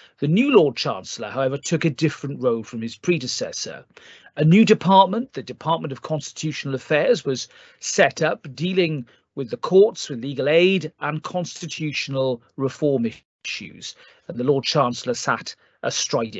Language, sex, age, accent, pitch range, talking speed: English, male, 40-59, British, 130-170 Hz, 145 wpm